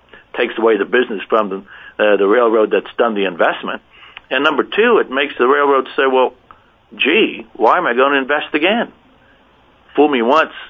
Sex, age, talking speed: male, 60-79, 180 wpm